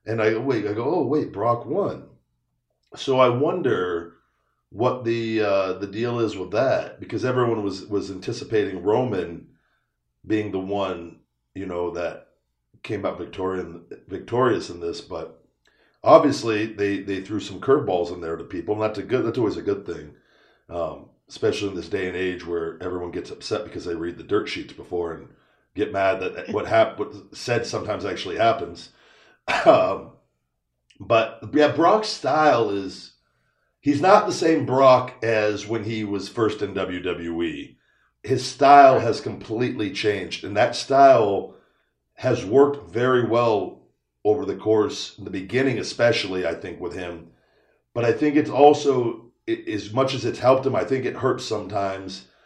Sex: male